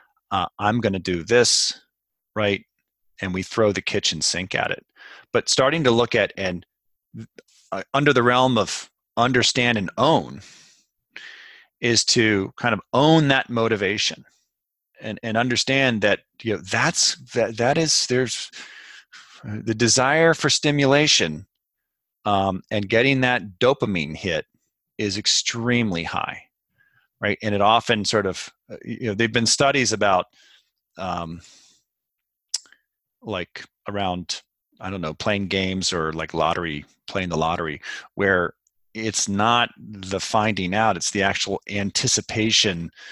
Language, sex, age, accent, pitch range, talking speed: English, male, 40-59, American, 100-125 Hz, 135 wpm